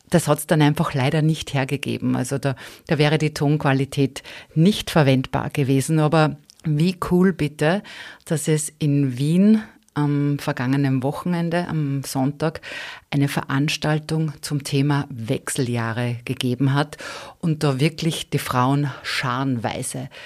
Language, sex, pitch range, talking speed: German, female, 145-180 Hz, 125 wpm